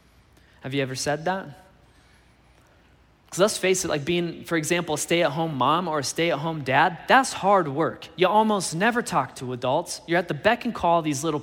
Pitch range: 135-170 Hz